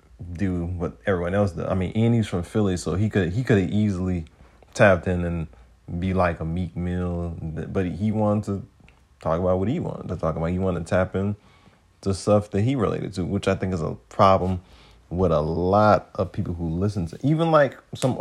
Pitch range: 85-105 Hz